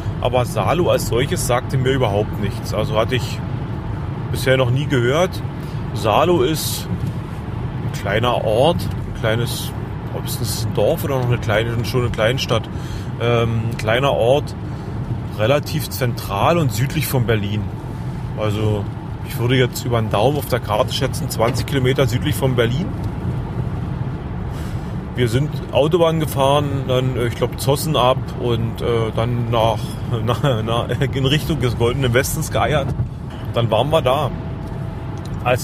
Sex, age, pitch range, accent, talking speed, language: male, 30-49, 115-140 Hz, German, 140 wpm, German